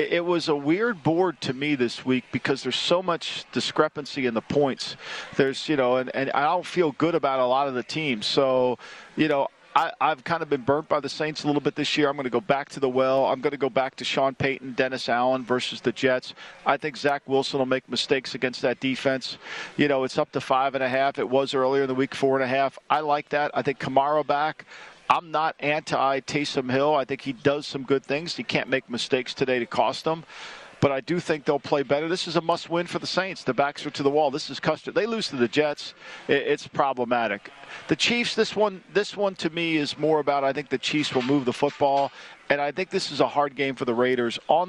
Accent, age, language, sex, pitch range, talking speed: American, 50-69, English, male, 130-150 Hz, 250 wpm